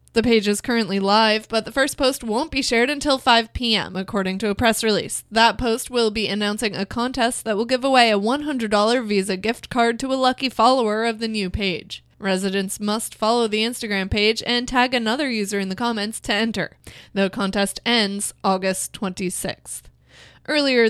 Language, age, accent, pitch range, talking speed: English, 20-39, American, 215-255 Hz, 185 wpm